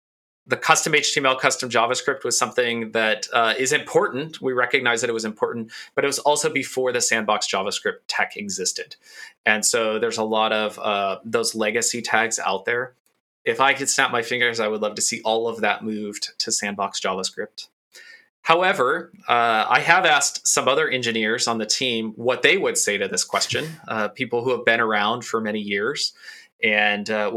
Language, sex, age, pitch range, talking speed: English, male, 20-39, 110-140 Hz, 190 wpm